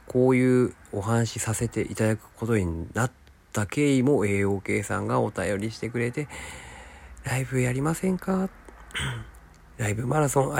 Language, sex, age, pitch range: Japanese, male, 40-59, 90-120 Hz